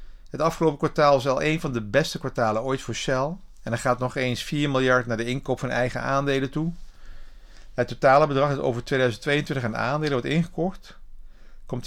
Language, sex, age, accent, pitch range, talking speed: Dutch, male, 50-69, Dutch, 95-135 Hz, 190 wpm